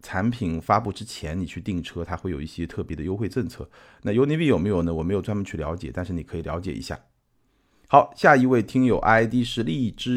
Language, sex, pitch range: Chinese, male, 90-125 Hz